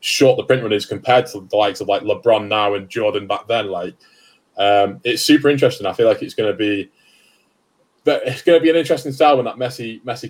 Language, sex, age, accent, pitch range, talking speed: English, male, 20-39, British, 110-160 Hz, 225 wpm